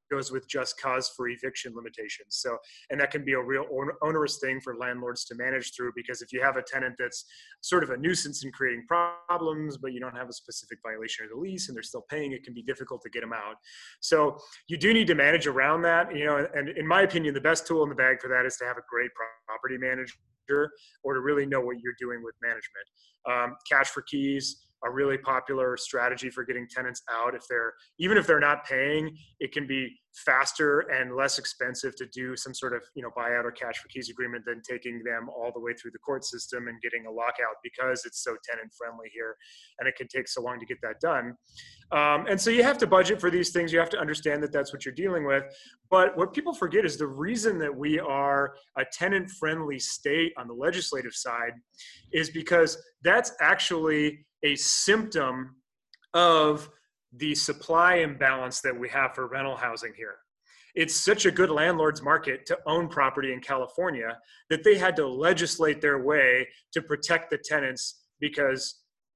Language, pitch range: English, 125-165 Hz